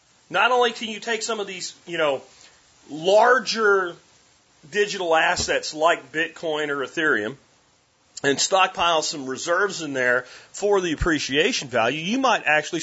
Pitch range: 160-215 Hz